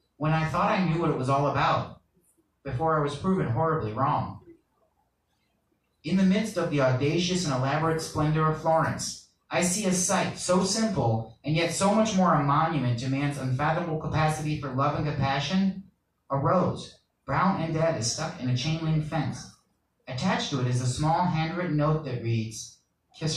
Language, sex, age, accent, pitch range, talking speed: English, male, 30-49, American, 135-175 Hz, 180 wpm